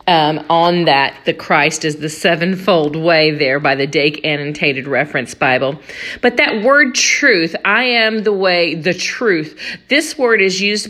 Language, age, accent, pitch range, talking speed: English, 50-69, American, 165-215 Hz, 165 wpm